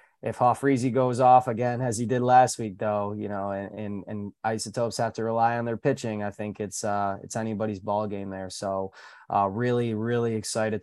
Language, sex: English, male